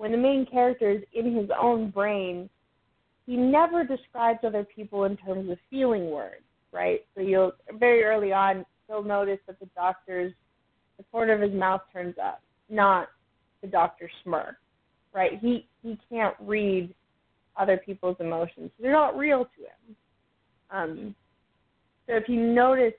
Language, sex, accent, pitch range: English, female, American, 190-235 Hz